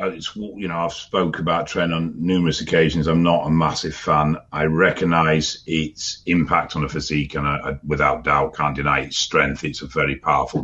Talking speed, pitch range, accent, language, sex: 195 wpm, 80-105 Hz, British, English, male